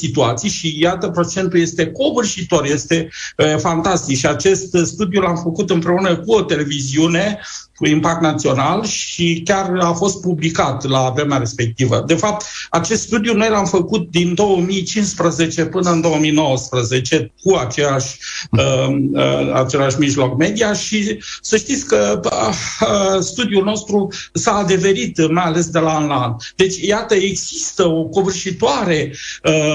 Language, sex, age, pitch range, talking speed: Romanian, male, 50-69, 155-195 Hz, 130 wpm